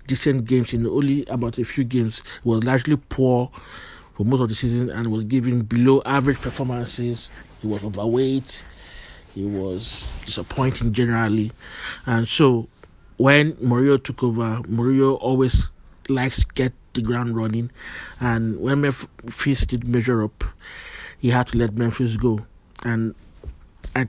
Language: English